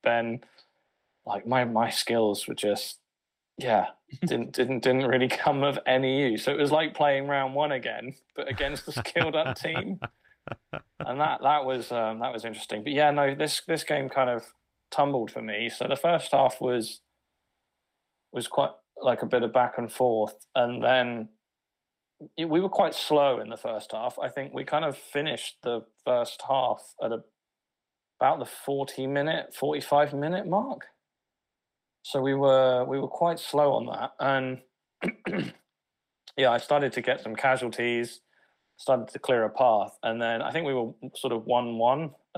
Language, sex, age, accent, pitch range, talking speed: English, male, 20-39, British, 110-140 Hz, 170 wpm